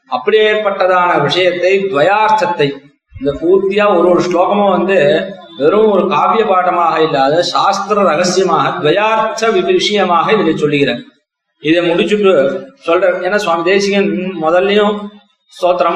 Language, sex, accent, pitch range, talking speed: Tamil, male, native, 175-205 Hz, 100 wpm